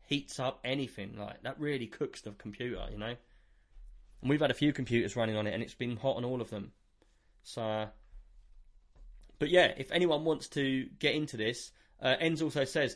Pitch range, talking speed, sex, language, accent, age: 115-140 Hz, 200 wpm, male, English, British, 20-39